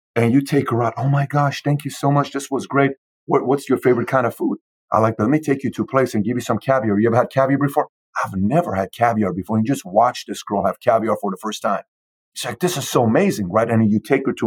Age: 40-59